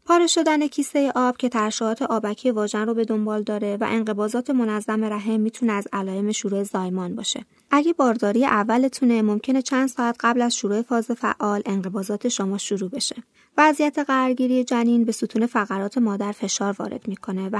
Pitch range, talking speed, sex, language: 210-265 Hz, 165 wpm, female, Persian